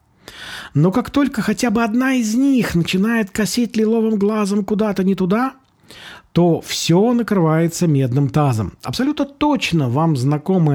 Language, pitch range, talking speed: Russian, 140-190 Hz, 135 wpm